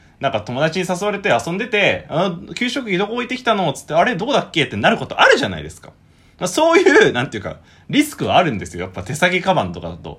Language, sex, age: Japanese, male, 20-39